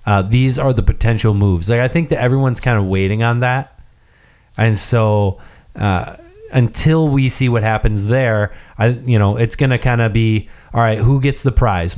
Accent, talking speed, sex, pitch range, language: American, 200 wpm, male, 100-120 Hz, English